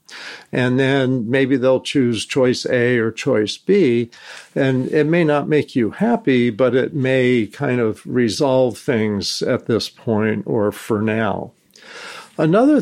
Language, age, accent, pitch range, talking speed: English, 50-69, American, 120-155 Hz, 145 wpm